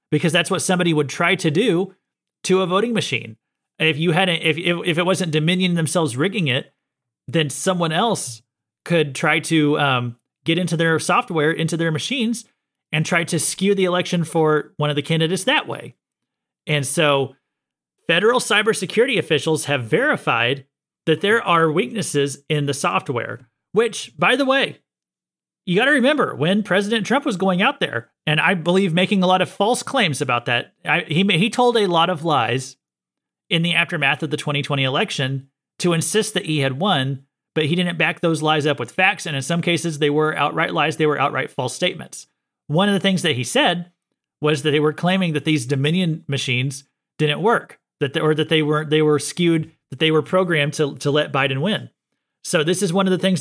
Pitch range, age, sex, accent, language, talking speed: 150-185 Hz, 30-49, male, American, English, 200 wpm